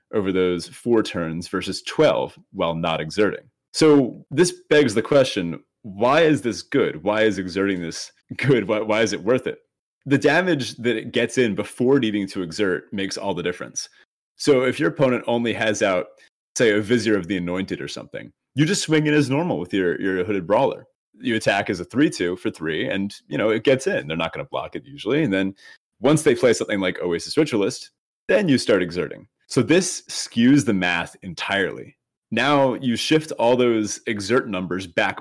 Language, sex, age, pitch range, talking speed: English, male, 30-49, 90-130 Hz, 200 wpm